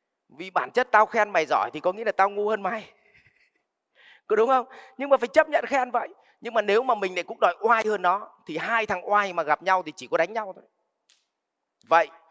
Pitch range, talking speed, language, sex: 165-215 Hz, 250 wpm, Vietnamese, male